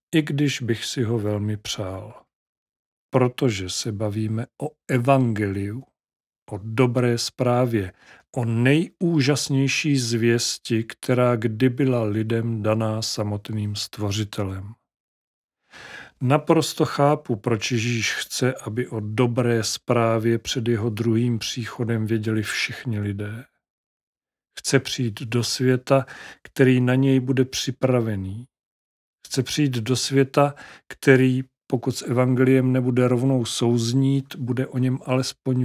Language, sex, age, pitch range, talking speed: Czech, male, 40-59, 110-130 Hz, 110 wpm